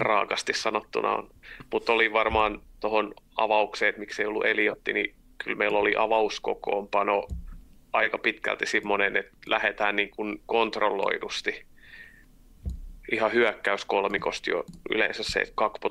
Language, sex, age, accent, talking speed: Finnish, male, 30-49, native, 120 wpm